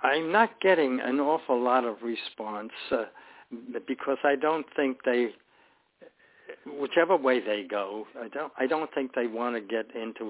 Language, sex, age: English, male, 60-79